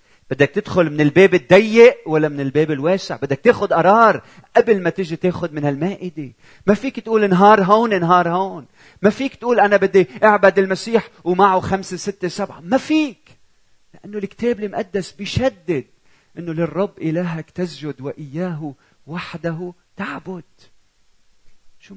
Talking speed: 135 wpm